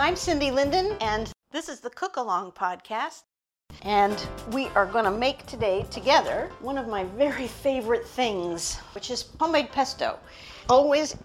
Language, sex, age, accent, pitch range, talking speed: English, female, 50-69, American, 195-250 Hz, 155 wpm